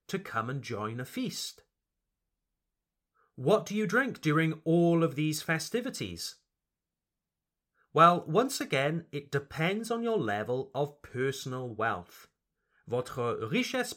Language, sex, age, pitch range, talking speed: French, male, 30-49, 120-175 Hz, 120 wpm